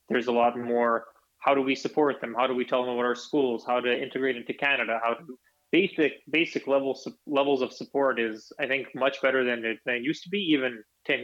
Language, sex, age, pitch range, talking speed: Ukrainian, male, 20-39, 120-140 Hz, 235 wpm